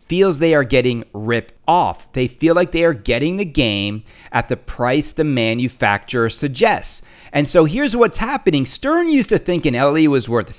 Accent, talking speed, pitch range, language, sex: American, 185 wpm, 125-180 Hz, English, male